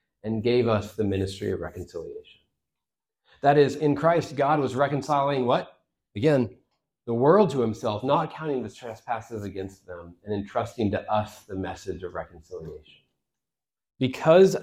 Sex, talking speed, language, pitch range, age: male, 145 wpm, English, 95-130 Hz, 30-49